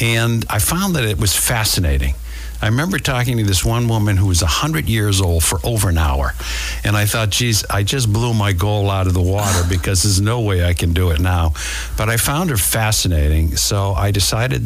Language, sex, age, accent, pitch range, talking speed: English, male, 60-79, American, 85-100 Hz, 215 wpm